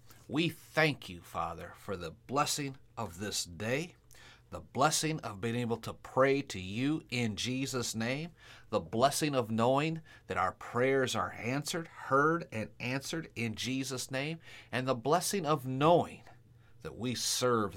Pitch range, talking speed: 110-140 Hz, 150 wpm